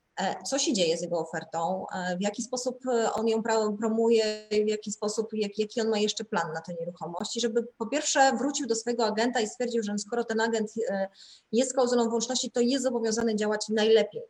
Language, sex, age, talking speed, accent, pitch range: Polish, female, 20-39, 190 wpm, native, 195-235 Hz